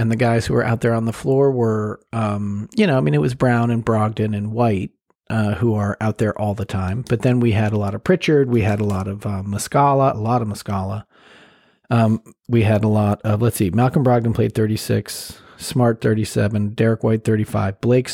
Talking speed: 225 wpm